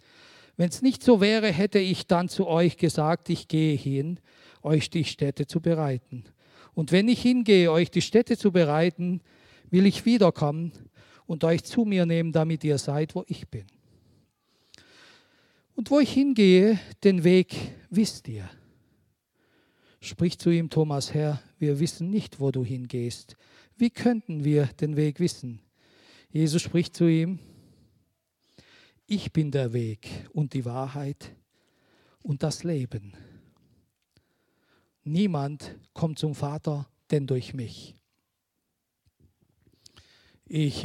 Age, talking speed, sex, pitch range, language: 50-69, 130 wpm, male, 130-170 Hz, German